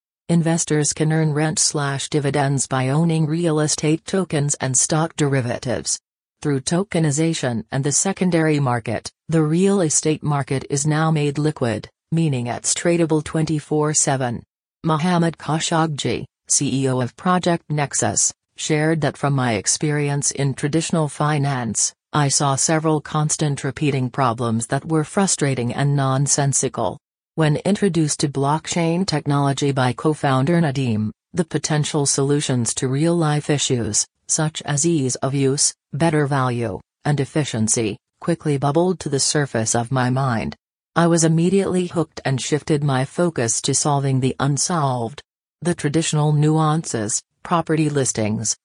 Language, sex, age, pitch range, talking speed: English, female, 40-59, 135-160 Hz, 125 wpm